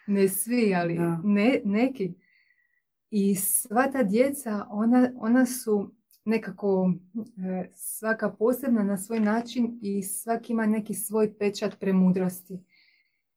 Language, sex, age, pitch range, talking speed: Croatian, female, 30-49, 195-230 Hz, 110 wpm